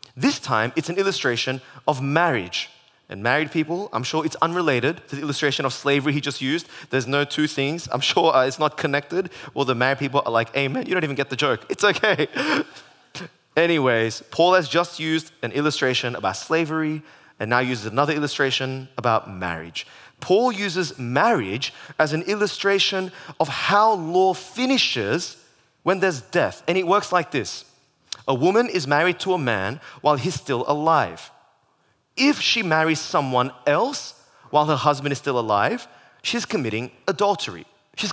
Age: 20-39